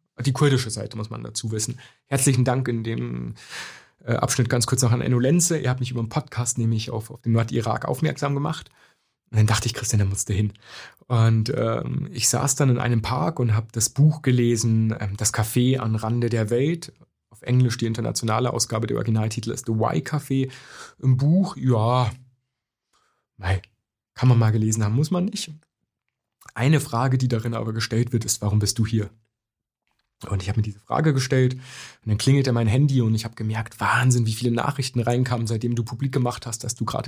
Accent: German